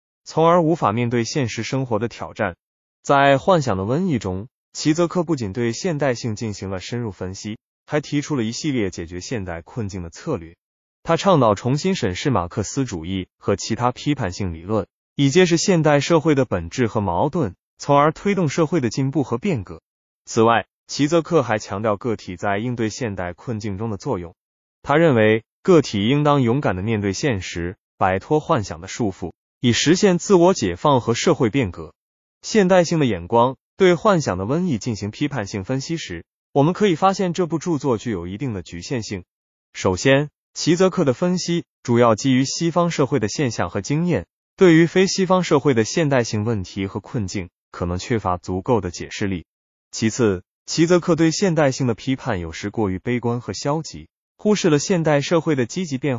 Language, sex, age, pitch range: Chinese, male, 20-39, 100-160 Hz